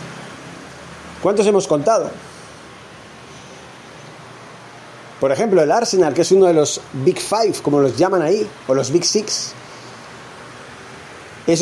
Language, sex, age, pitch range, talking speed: Spanish, male, 40-59, 140-195 Hz, 120 wpm